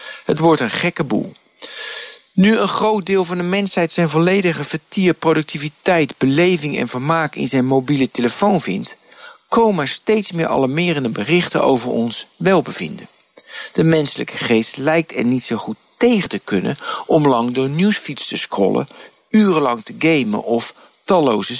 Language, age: Dutch, 50-69